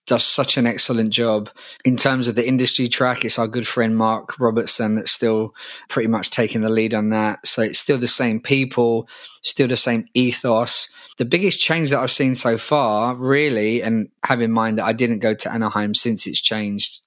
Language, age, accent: English, 20-39, British